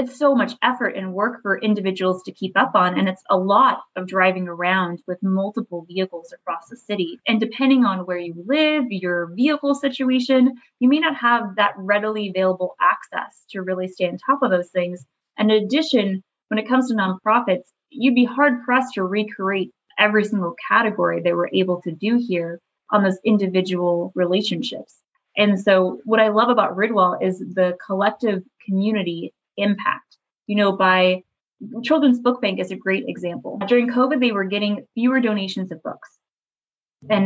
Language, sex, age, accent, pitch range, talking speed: English, female, 20-39, American, 185-240 Hz, 175 wpm